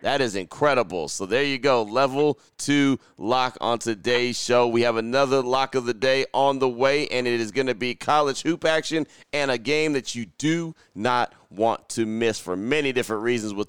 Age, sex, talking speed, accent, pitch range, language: 30-49, male, 205 wpm, American, 110-125 Hz, English